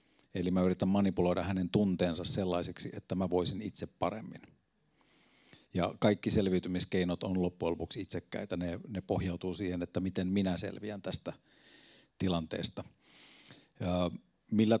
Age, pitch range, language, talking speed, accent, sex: 50-69, 90-100 Hz, Finnish, 125 wpm, native, male